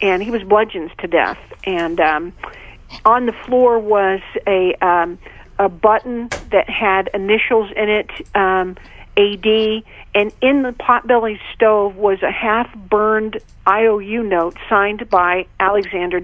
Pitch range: 190-230 Hz